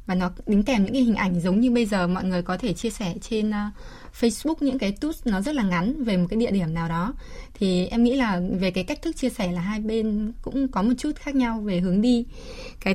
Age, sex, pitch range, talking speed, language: 20-39, female, 185-240 Hz, 265 wpm, Vietnamese